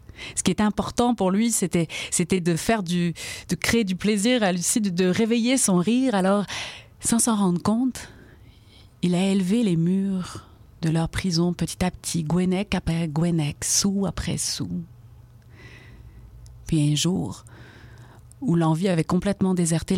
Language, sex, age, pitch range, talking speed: French, female, 30-49, 115-180 Hz, 155 wpm